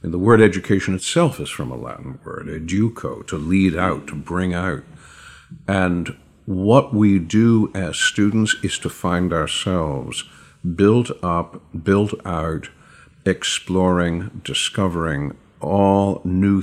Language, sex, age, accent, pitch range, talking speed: English, male, 50-69, American, 85-100 Hz, 125 wpm